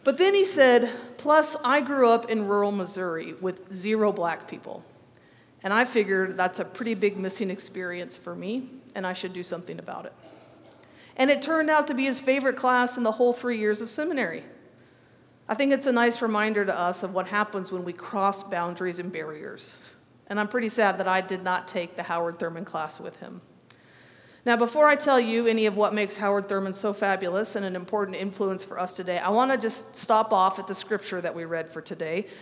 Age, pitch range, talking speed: 50-69, 190-245 Hz, 215 wpm